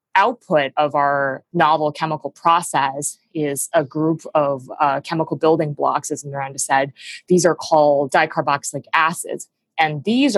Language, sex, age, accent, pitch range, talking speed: English, female, 20-39, American, 140-165 Hz, 140 wpm